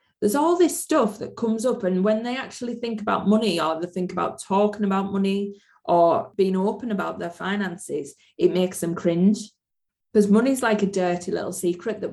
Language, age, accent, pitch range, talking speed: English, 20-39, British, 180-215 Hz, 195 wpm